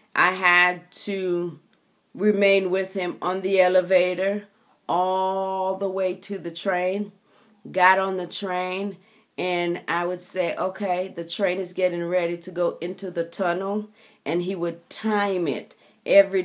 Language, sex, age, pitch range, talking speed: English, female, 40-59, 175-200 Hz, 145 wpm